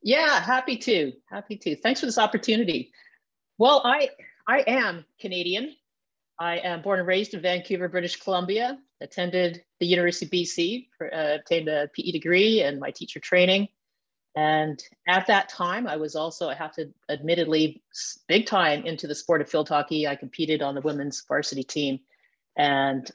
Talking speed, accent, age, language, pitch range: 170 wpm, American, 40-59, English, 155-195 Hz